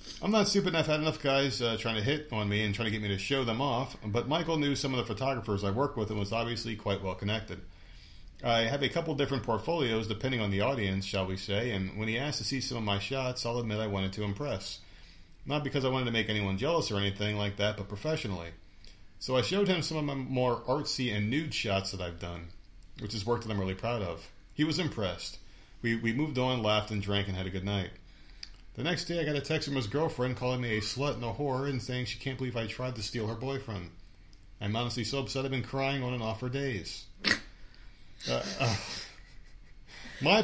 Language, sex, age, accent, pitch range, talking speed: English, male, 40-59, American, 100-135 Hz, 240 wpm